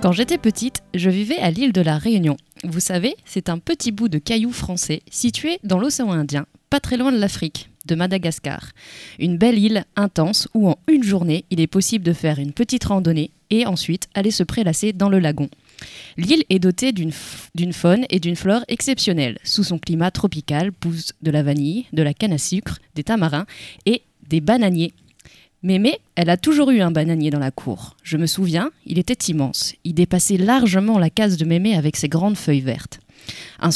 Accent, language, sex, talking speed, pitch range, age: French, French, female, 200 wpm, 165-225 Hz, 20-39